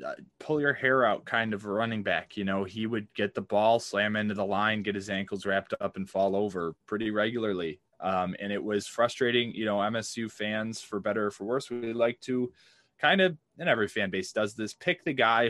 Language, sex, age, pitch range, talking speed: English, male, 20-39, 100-120 Hz, 220 wpm